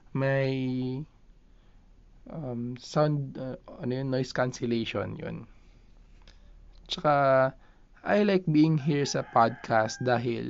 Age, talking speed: 20-39, 105 wpm